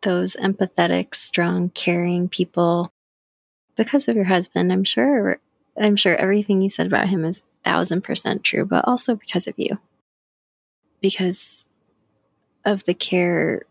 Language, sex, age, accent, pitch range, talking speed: English, female, 20-39, American, 175-205 Hz, 130 wpm